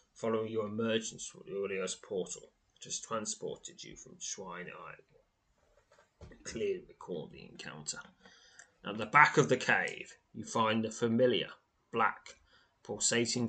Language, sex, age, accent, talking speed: English, male, 30-49, British, 135 wpm